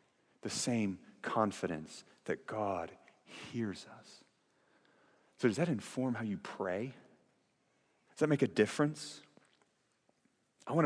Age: 30-49